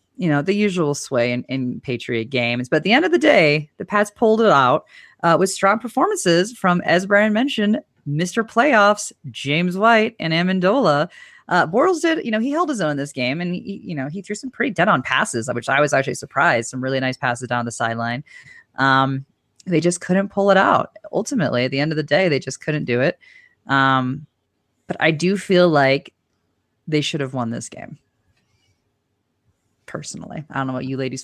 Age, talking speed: 30-49, 205 wpm